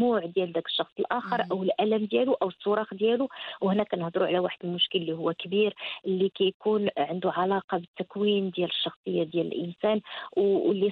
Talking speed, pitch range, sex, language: 155 wpm, 185-235 Hz, female, Arabic